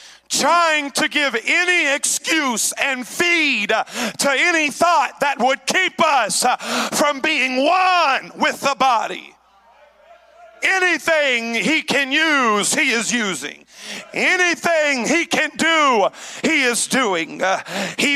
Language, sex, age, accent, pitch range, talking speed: English, male, 40-59, American, 270-330 Hz, 115 wpm